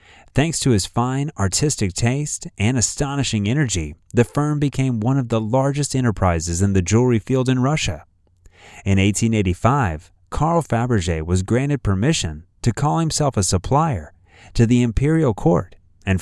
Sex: male